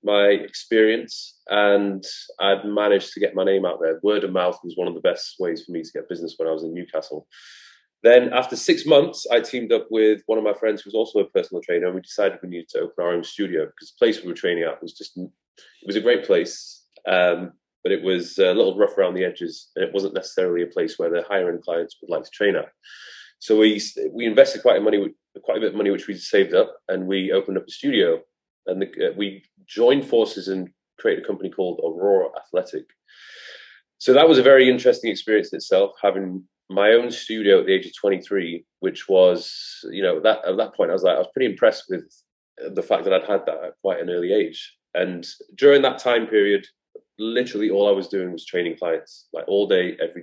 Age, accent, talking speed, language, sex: 30-49, British, 235 wpm, English, male